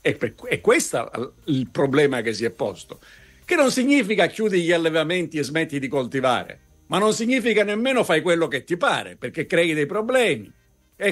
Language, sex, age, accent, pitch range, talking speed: Italian, male, 50-69, native, 140-220 Hz, 195 wpm